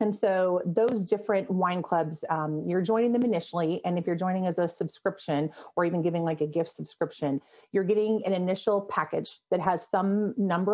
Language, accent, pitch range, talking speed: English, American, 165-205 Hz, 190 wpm